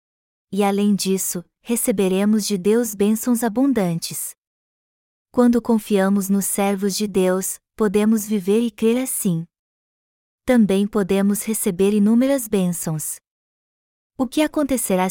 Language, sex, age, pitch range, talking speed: Portuguese, female, 20-39, 190-230 Hz, 105 wpm